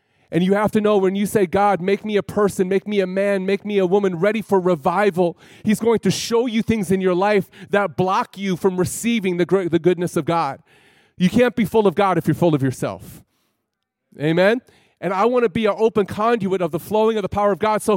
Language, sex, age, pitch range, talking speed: English, male, 30-49, 190-225 Hz, 235 wpm